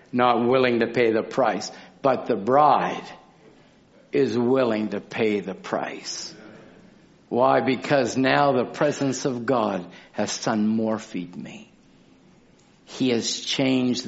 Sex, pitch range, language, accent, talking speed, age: male, 110-140 Hz, English, American, 125 wpm, 60-79